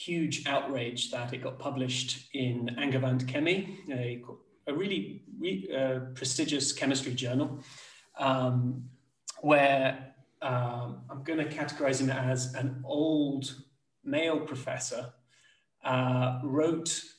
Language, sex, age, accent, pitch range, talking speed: English, male, 30-49, British, 125-140 Hz, 110 wpm